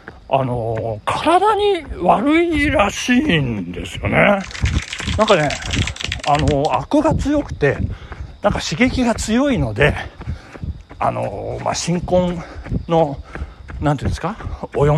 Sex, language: male, Japanese